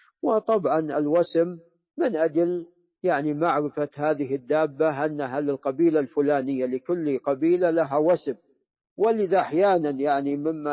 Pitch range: 150-185 Hz